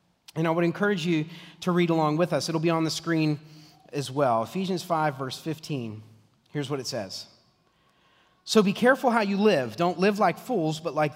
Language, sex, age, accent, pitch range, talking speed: English, male, 30-49, American, 130-170 Hz, 200 wpm